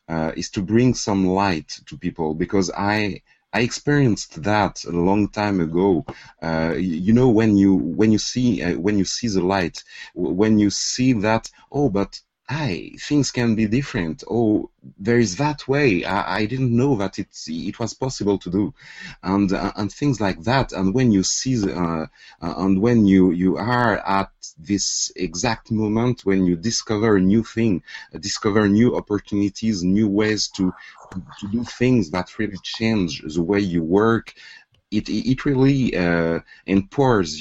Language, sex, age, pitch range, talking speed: English, male, 30-49, 90-115 Hz, 170 wpm